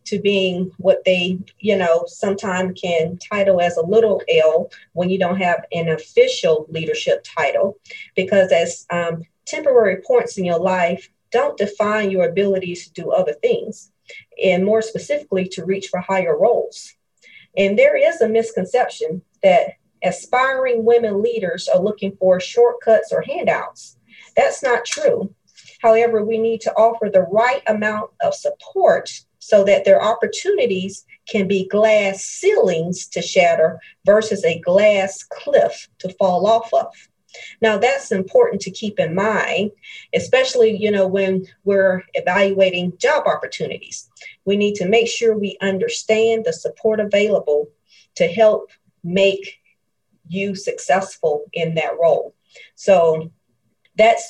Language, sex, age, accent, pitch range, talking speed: English, female, 40-59, American, 185-230 Hz, 140 wpm